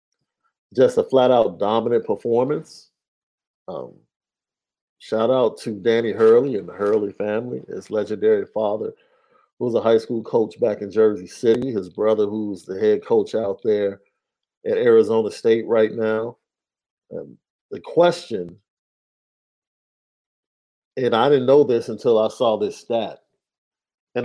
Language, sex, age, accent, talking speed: English, male, 50-69, American, 135 wpm